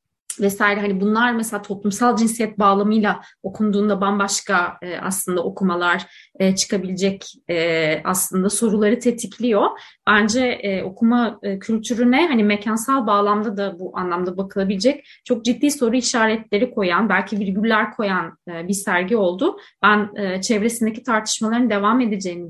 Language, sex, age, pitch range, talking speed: Turkish, female, 30-49, 190-235 Hz, 110 wpm